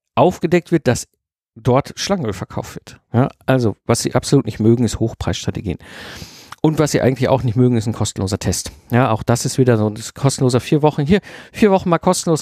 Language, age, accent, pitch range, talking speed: German, 50-69, German, 120-165 Hz, 200 wpm